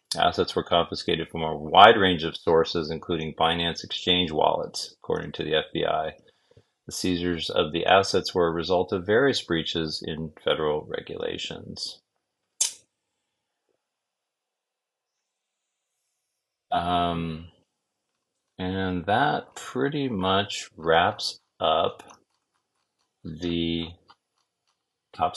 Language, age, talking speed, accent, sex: English, 40-59, 95 wpm, American, male